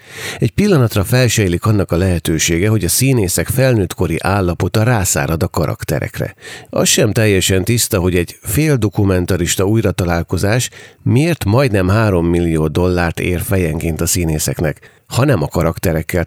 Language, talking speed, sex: Hungarian, 135 wpm, male